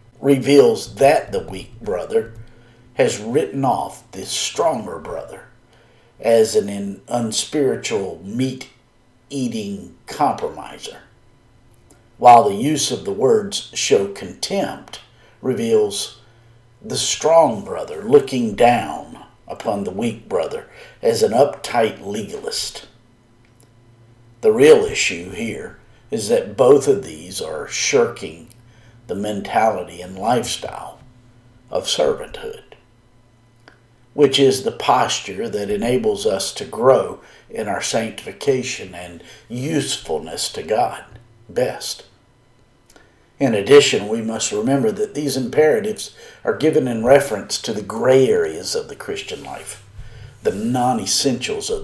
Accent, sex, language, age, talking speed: American, male, English, 50-69, 110 wpm